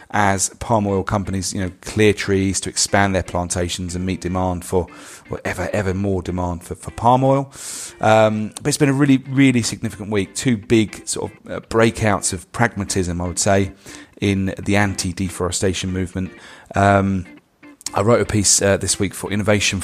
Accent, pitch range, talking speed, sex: British, 90-100 Hz, 180 wpm, male